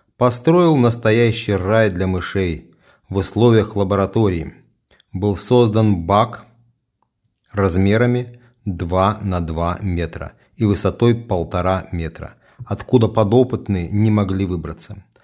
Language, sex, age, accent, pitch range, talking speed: Russian, male, 30-49, native, 90-110 Hz, 100 wpm